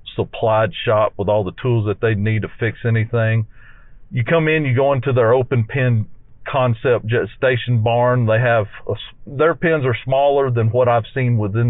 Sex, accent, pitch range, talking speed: male, American, 110-130 Hz, 185 wpm